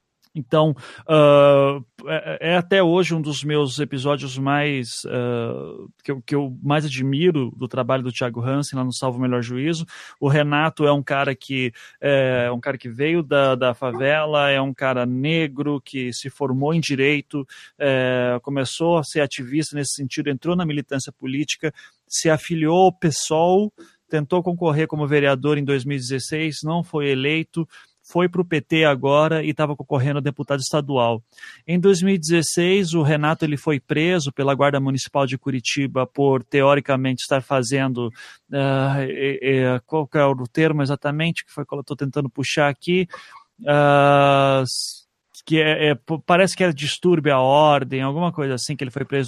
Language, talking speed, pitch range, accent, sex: Portuguese, 165 wpm, 135-155 Hz, Brazilian, male